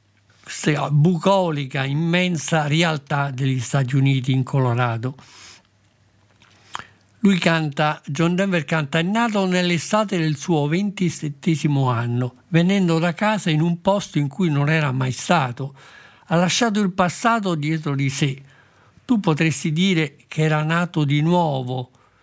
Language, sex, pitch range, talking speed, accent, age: Italian, male, 140-170 Hz, 125 wpm, native, 50-69